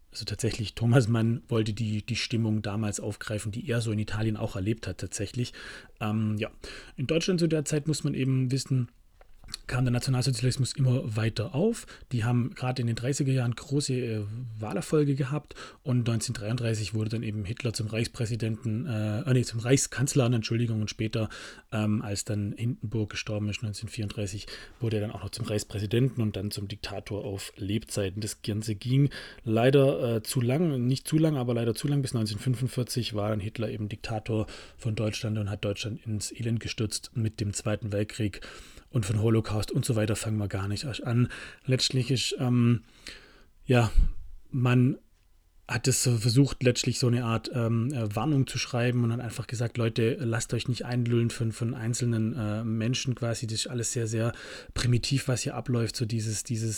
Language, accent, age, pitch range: German, German, 30-49, 110-125 Hz